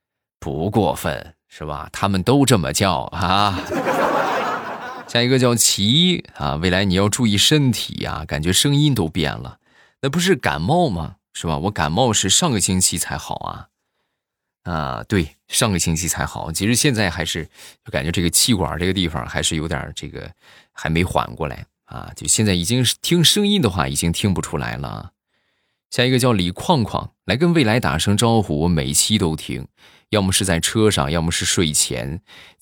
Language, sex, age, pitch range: Chinese, male, 20-39, 80-115 Hz